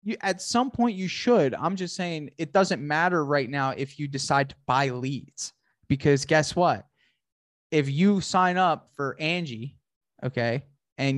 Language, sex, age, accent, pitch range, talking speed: English, male, 20-39, American, 135-170 Hz, 160 wpm